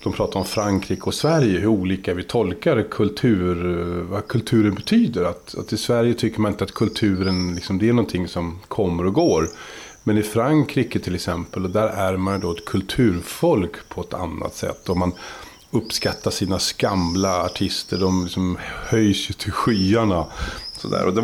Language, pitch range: Swedish, 95-120 Hz